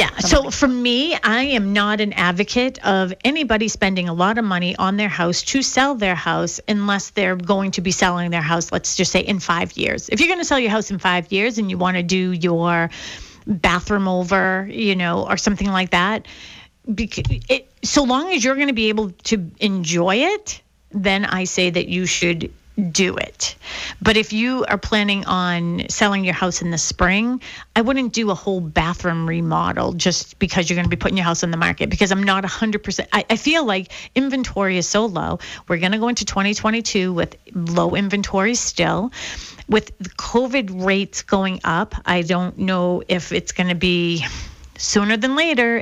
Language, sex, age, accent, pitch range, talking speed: English, female, 40-59, American, 180-220 Hz, 195 wpm